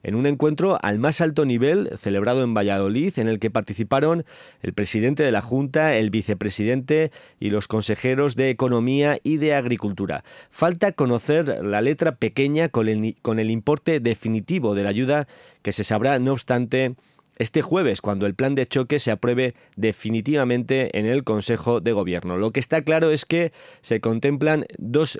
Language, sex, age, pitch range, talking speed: Spanish, male, 30-49, 110-140 Hz, 170 wpm